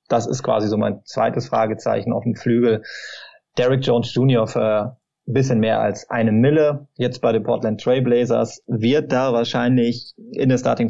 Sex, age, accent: male, 20-39, German